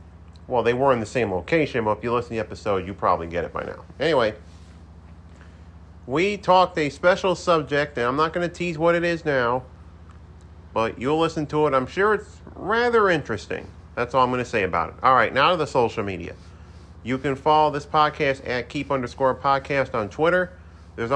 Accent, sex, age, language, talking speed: American, male, 40-59, English, 205 wpm